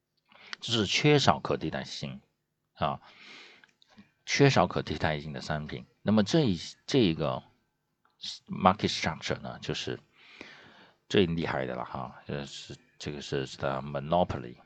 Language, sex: Chinese, male